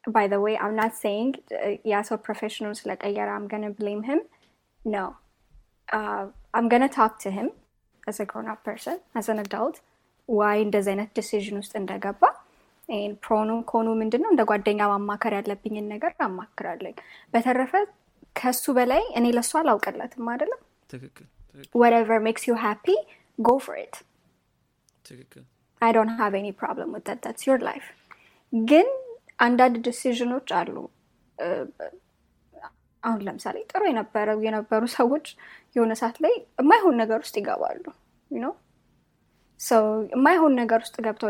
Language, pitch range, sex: Amharic, 210-255 Hz, female